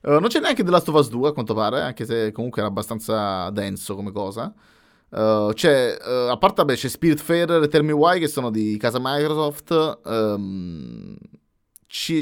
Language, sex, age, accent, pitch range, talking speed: Italian, male, 20-39, native, 105-140 Hz, 185 wpm